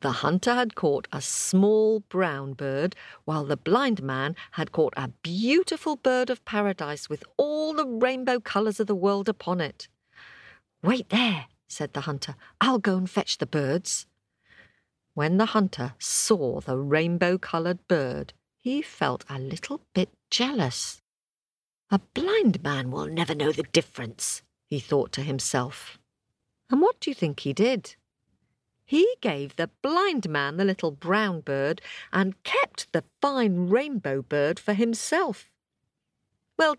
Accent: British